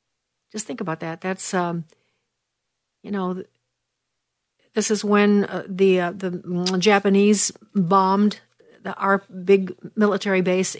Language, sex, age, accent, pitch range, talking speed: English, female, 60-79, American, 185-210 Hz, 120 wpm